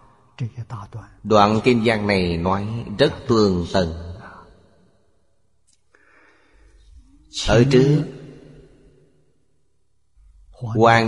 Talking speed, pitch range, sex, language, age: 60 wpm, 95-120 Hz, male, Vietnamese, 30-49